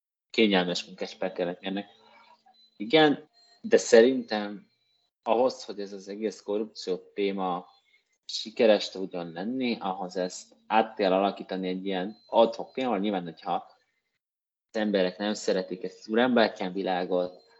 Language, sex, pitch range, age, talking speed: Hungarian, male, 90-115 Hz, 30-49, 110 wpm